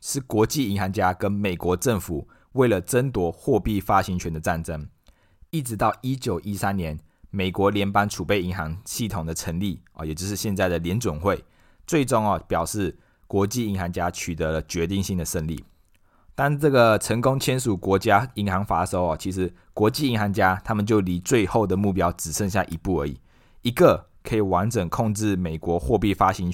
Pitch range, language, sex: 85-105 Hz, Chinese, male